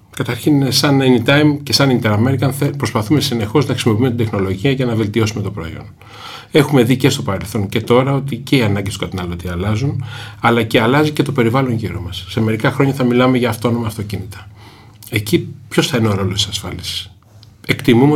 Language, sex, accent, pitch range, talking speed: Greek, male, native, 105-130 Hz, 190 wpm